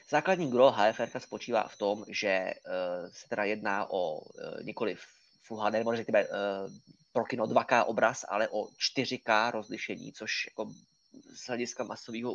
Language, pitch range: Czech, 110-140 Hz